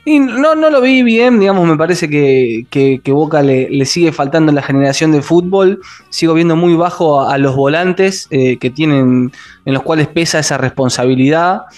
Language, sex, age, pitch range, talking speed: Spanish, male, 20-39, 135-170 Hz, 200 wpm